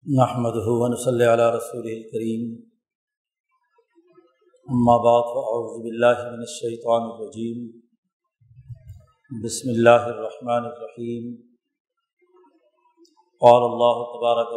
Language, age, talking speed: Urdu, 50-69, 80 wpm